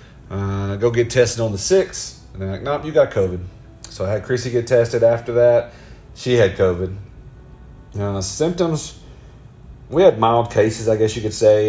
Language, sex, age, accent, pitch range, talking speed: English, male, 40-59, American, 100-125 Hz, 185 wpm